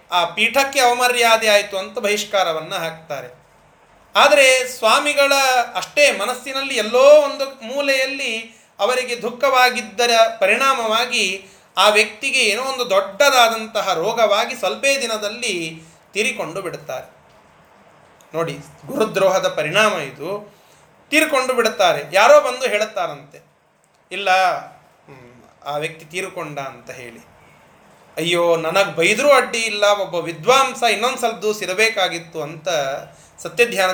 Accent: native